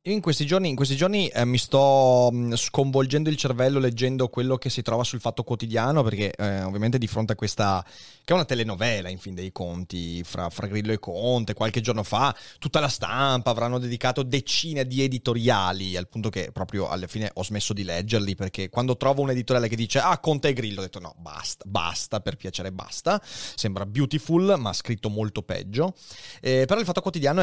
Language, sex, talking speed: Italian, male, 195 wpm